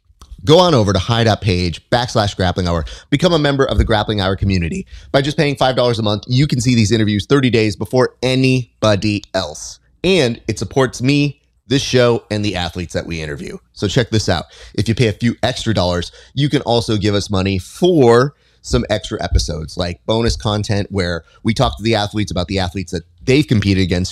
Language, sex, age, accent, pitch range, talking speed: English, male, 30-49, American, 90-115 Hz, 200 wpm